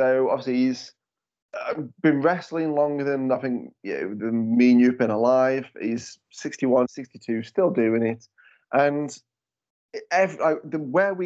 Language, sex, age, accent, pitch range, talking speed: English, male, 30-49, British, 120-155 Hz, 130 wpm